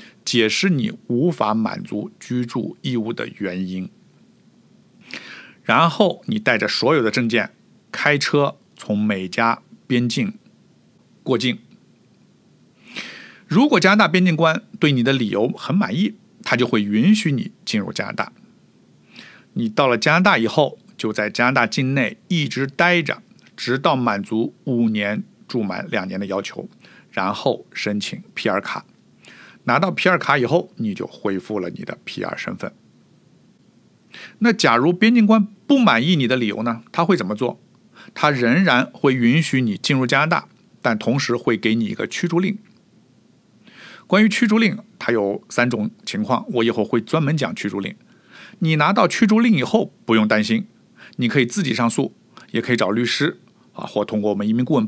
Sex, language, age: male, Chinese, 60-79